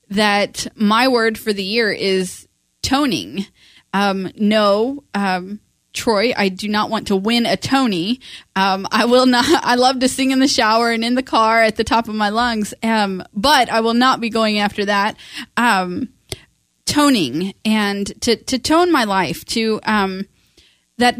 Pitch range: 195-235 Hz